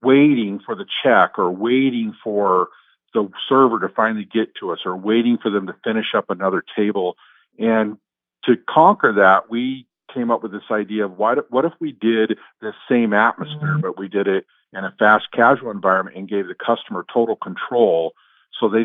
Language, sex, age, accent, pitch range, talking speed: English, male, 50-69, American, 100-115 Hz, 185 wpm